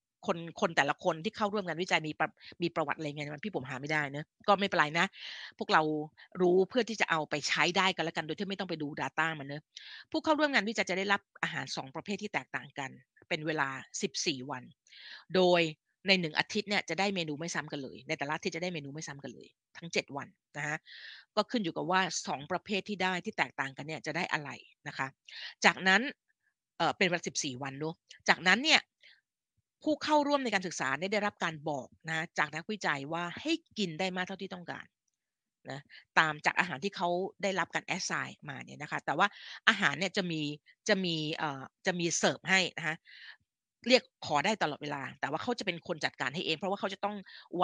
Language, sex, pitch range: Thai, female, 155-200 Hz